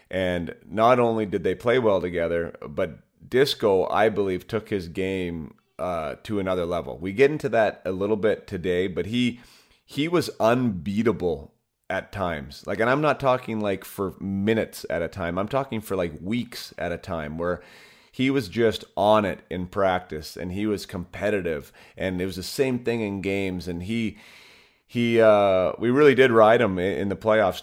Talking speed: 185 wpm